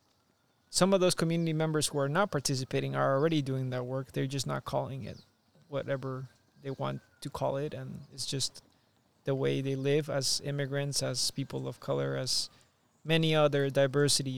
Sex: male